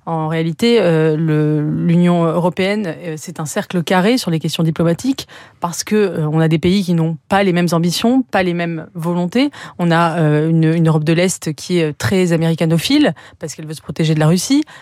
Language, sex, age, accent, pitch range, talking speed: French, female, 30-49, French, 165-205 Hz, 210 wpm